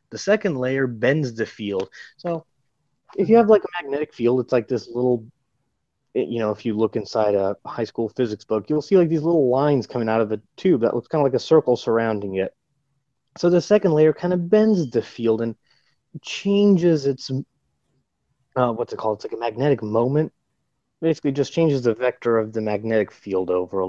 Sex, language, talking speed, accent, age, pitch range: male, English, 205 wpm, American, 30-49, 115-155 Hz